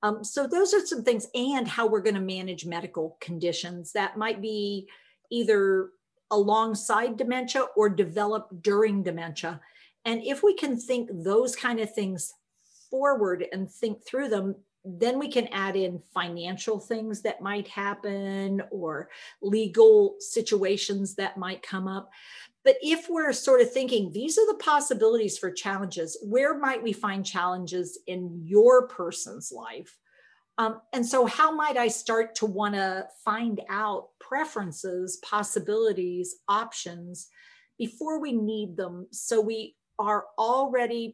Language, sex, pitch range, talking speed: English, female, 190-245 Hz, 145 wpm